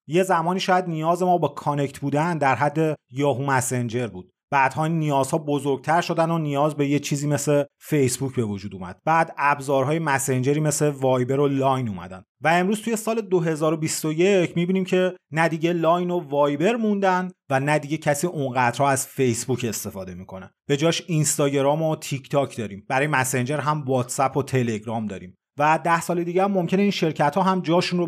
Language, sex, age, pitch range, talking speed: Persian, male, 30-49, 130-165 Hz, 175 wpm